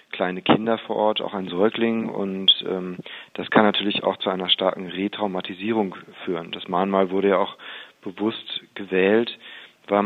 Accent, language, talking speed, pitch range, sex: German, German, 155 wpm, 95-100 Hz, male